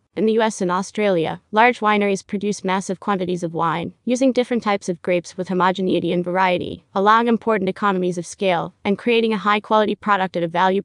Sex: female